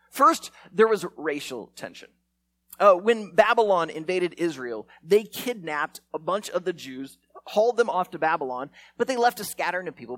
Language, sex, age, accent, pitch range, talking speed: English, male, 30-49, American, 155-235 Hz, 170 wpm